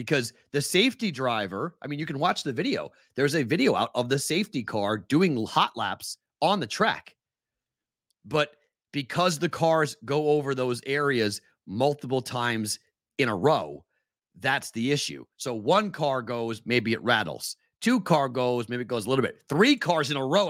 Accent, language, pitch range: American, English, 120-150 Hz